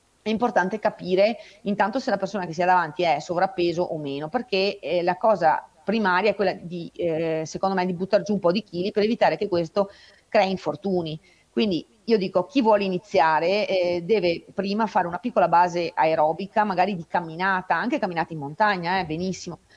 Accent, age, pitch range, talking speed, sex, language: native, 30-49, 170-205 Hz, 190 wpm, female, Italian